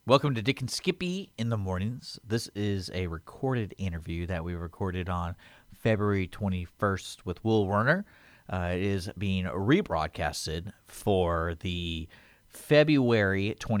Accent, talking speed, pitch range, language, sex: American, 130 wpm, 100-135 Hz, English, male